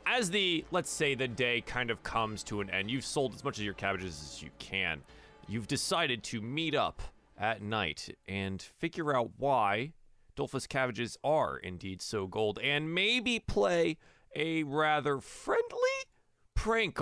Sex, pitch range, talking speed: male, 115-170 Hz, 160 wpm